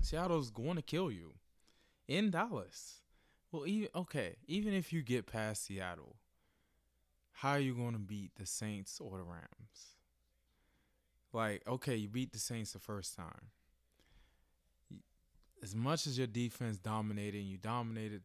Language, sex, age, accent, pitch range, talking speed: English, male, 20-39, American, 90-115 Hz, 150 wpm